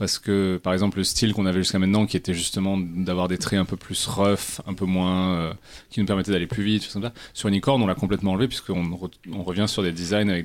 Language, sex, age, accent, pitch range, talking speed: French, male, 30-49, French, 90-105 Hz, 265 wpm